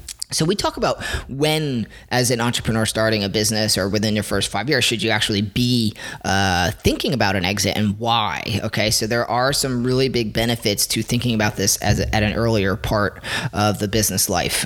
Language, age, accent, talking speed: English, 30-49, American, 205 wpm